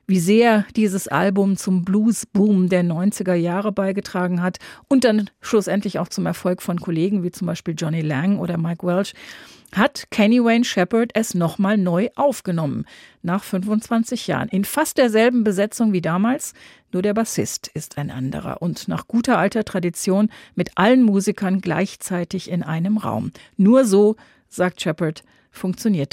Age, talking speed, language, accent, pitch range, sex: 40-59, 150 wpm, German, German, 170-215 Hz, female